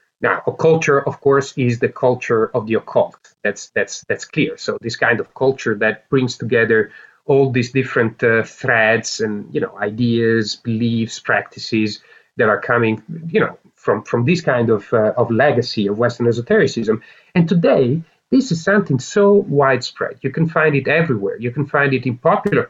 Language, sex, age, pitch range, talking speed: English, male, 40-59, 120-160 Hz, 180 wpm